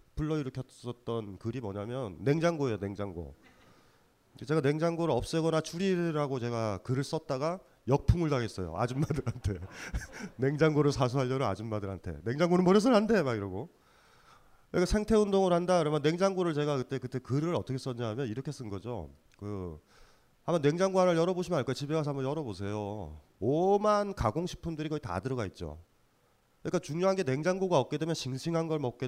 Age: 30-49